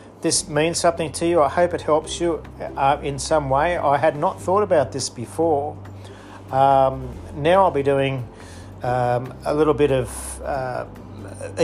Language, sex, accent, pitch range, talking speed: English, male, Australian, 120-160 Hz, 165 wpm